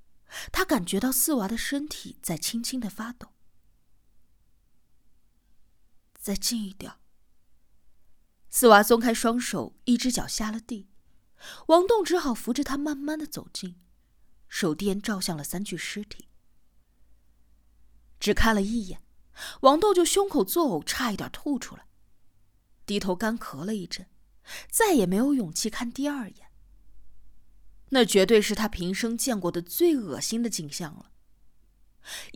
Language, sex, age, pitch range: Chinese, female, 20-39, 170-260 Hz